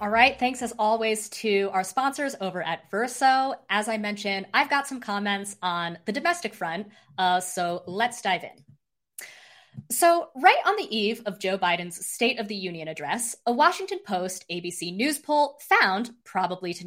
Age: 20-39